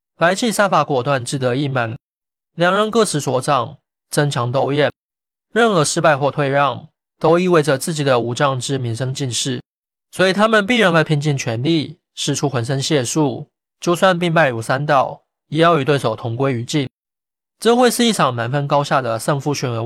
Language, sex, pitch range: Chinese, male, 130-165 Hz